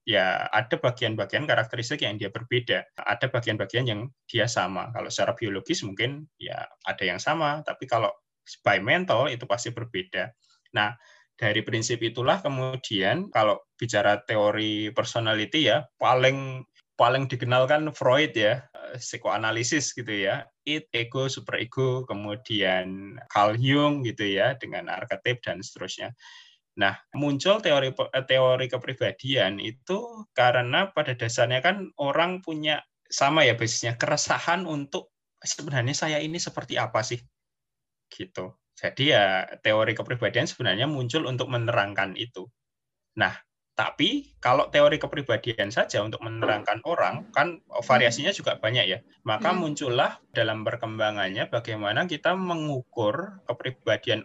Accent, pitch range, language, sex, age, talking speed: native, 115-150 Hz, Indonesian, male, 20-39, 125 wpm